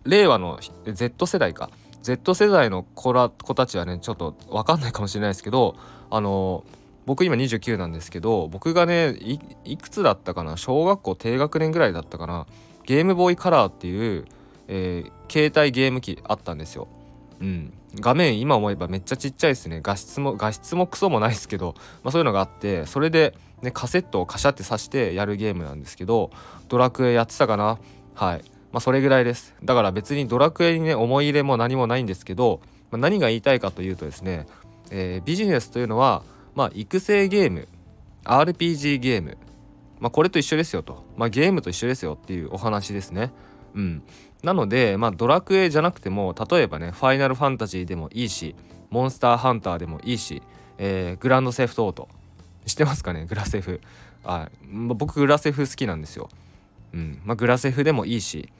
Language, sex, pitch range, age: Japanese, male, 95-135 Hz, 20-39